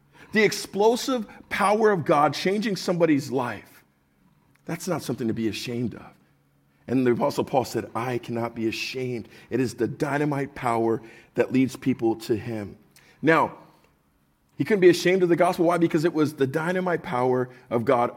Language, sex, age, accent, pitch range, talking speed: English, male, 50-69, American, 125-175 Hz, 170 wpm